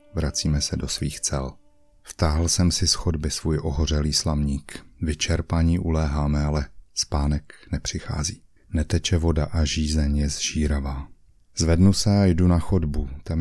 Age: 30-49